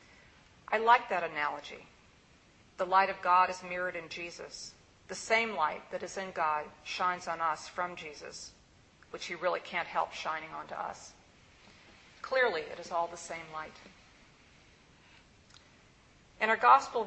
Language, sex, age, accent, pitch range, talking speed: English, female, 50-69, American, 170-215 Hz, 150 wpm